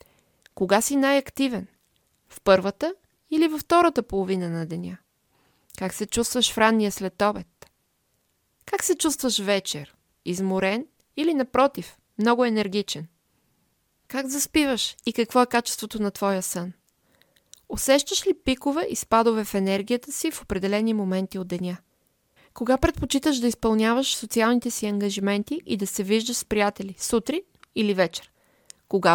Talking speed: 135 wpm